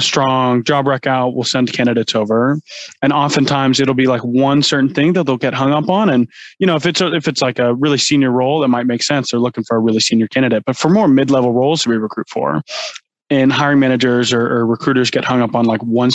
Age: 20-39